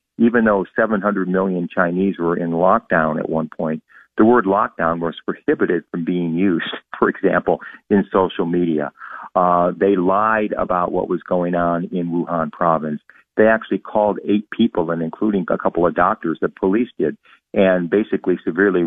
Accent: American